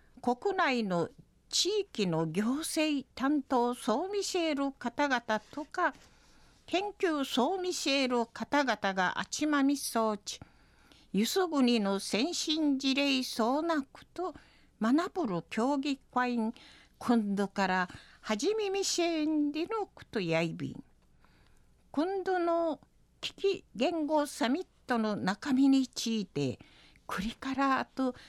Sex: female